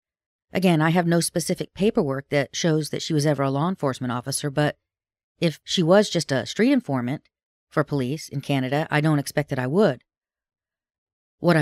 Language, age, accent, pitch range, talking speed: English, 40-59, American, 145-185 Hz, 180 wpm